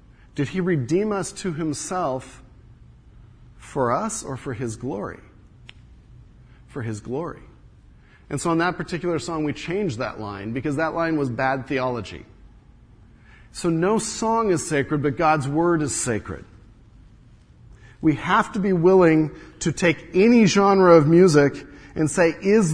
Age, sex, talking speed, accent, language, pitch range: 40-59, male, 145 wpm, American, English, 120-175 Hz